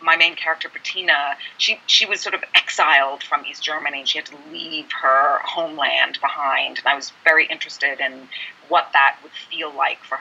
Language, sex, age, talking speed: English, female, 30-49, 195 wpm